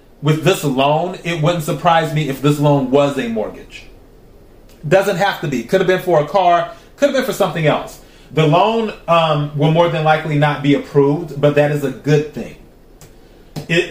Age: 30-49